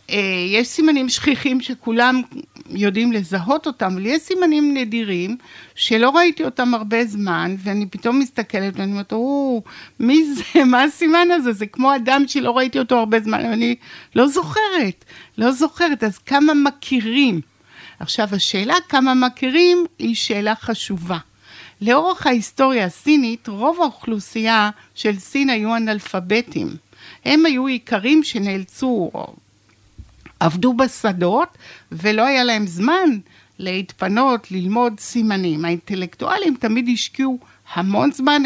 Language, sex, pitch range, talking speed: Hebrew, female, 200-270 Hz, 120 wpm